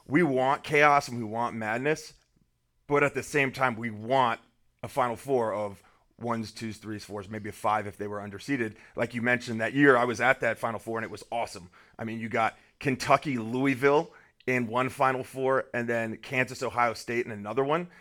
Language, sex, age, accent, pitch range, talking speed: English, male, 30-49, American, 110-130 Hz, 200 wpm